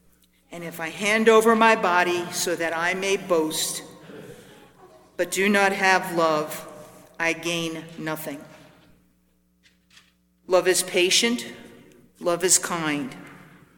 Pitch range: 155-205 Hz